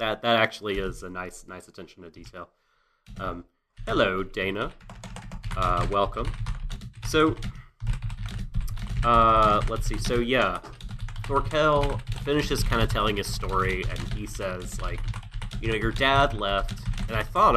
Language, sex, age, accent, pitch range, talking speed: English, male, 30-49, American, 95-115 Hz, 135 wpm